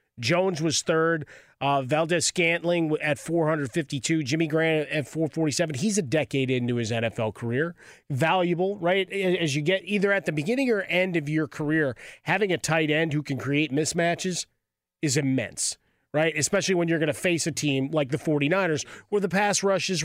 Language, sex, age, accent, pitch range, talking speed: English, male, 30-49, American, 135-170 Hz, 180 wpm